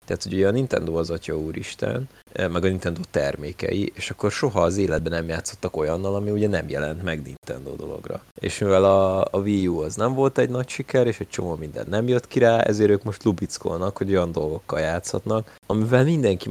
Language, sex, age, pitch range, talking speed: Hungarian, male, 30-49, 85-110 Hz, 205 wpm